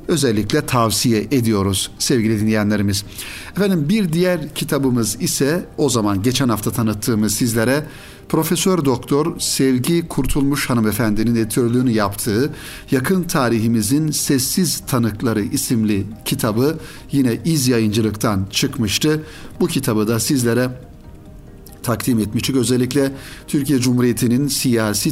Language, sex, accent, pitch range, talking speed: Turkish, male, native, 115-140 Hz, 105 wpm